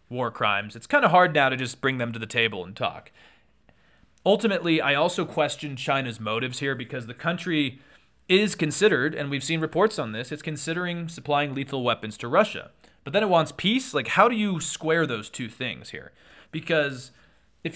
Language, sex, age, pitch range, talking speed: English, male, 30-49, 125-160 Hz, 195 wpm